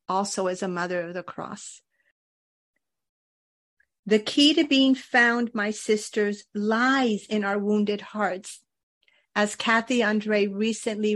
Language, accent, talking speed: English, American, 125 wpm